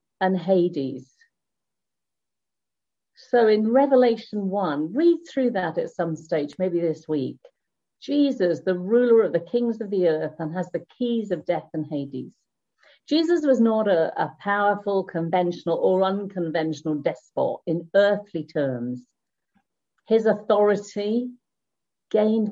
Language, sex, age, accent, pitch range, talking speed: English, female, 50-69, British, 175-220 Hz, 130 wpm